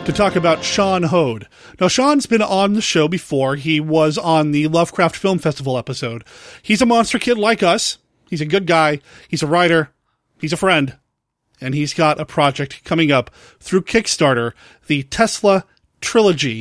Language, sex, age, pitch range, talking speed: English, male, 30-49, 150-210 Hz, 175 wpm